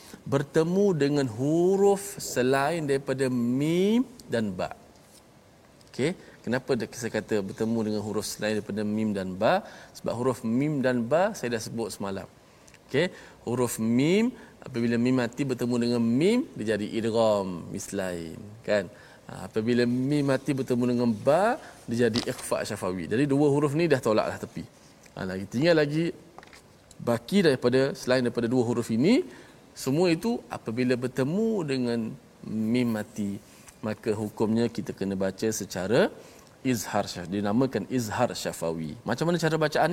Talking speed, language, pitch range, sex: 140 wpm, Malayalam, 110-140 Hz, male